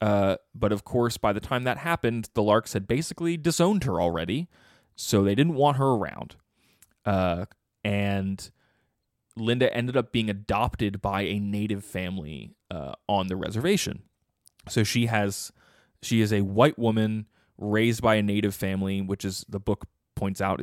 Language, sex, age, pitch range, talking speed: English, male, 20-39, 95-120 Hz, 165 wpm